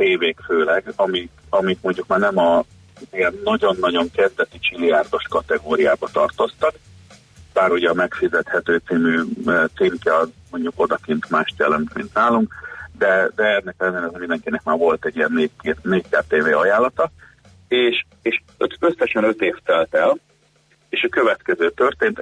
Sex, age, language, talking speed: male, 40-59, Hungarian, 130 wpm